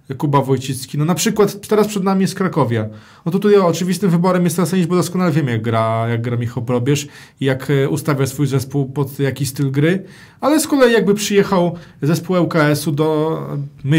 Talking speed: 195 wpm